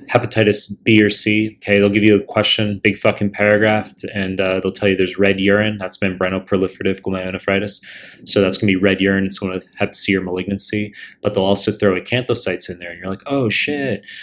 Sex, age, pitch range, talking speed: male, 20-39, 95-105 Hz, 210 wpm